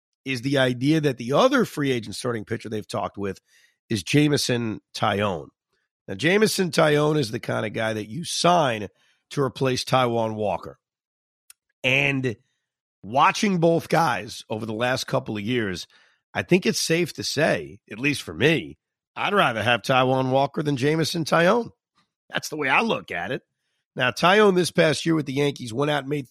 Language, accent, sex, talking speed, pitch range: English, American, male, 180 wpm, 115-150 Hz